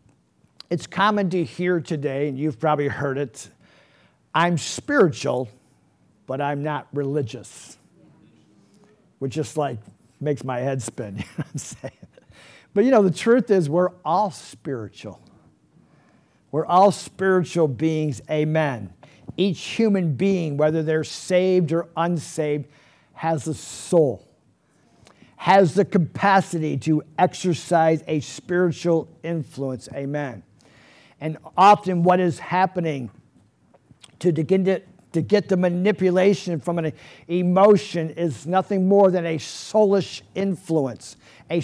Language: English